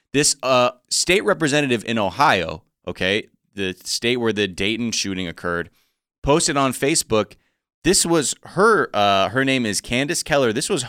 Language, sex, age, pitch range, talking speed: English, male, 30-49, 95-135 Hz, 155 wpm